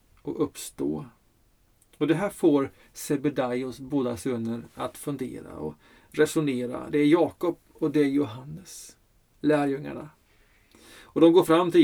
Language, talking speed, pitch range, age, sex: Swedish, 130 wpm, 110-150 Hz, 40-59, male